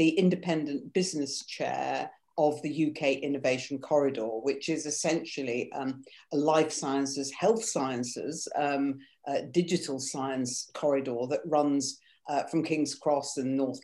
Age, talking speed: 50-69, 130 wpm